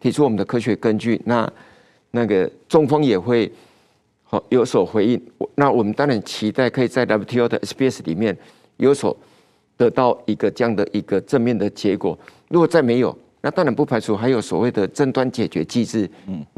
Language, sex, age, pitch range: Chinese, male, 50-69, 110-145 Hz